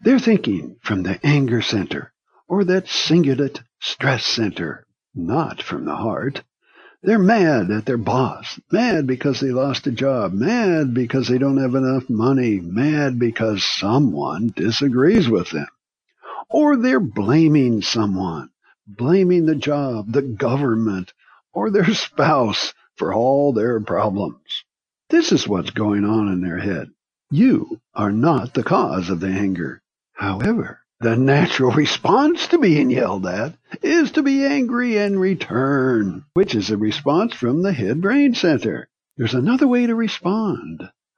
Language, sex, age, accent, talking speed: English, male, 60-79, American, 145 wpm